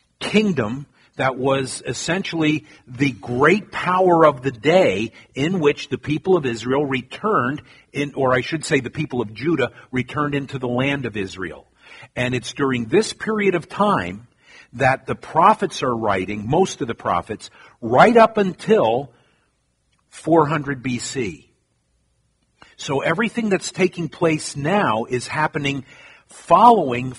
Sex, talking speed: male, 135 wpm